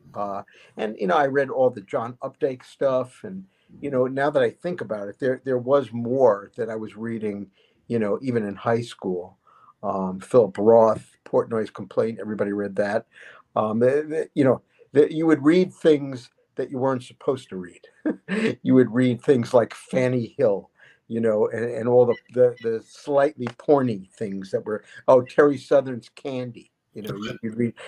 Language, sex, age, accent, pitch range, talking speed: English, male, 50-69, American, 115-140 Hz, 180 wpm